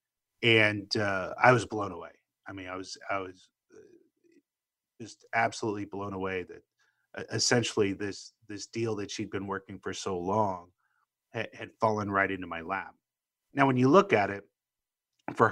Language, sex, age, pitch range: English, male, 30-49, 95-115 Hz